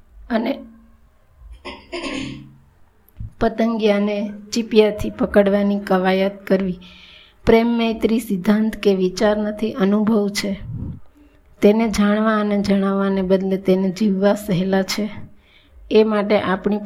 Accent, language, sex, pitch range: native, Gujarati, female, 195-220 Hz